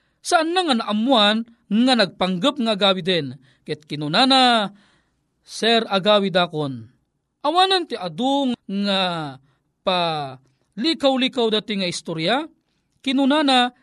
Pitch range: 185-255 Hz